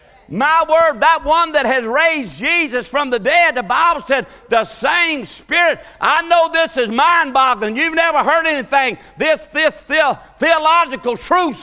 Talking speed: 160 wpm